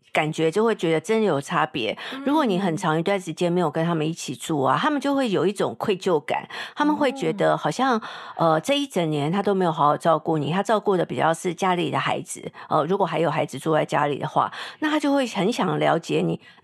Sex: female